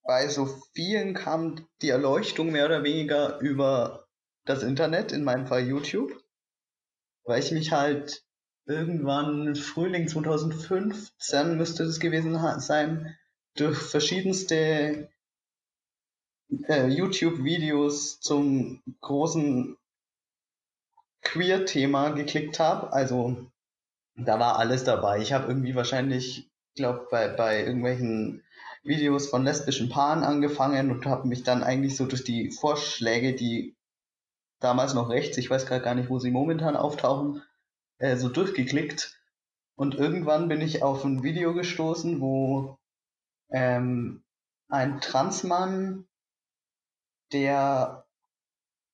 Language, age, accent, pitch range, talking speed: German, 20-39, German, 130-160 Hz, 115 wpm